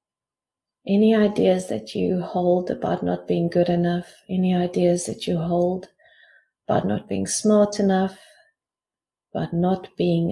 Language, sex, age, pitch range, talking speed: English, female, 30-49, 185-220 Hz, 135 wpm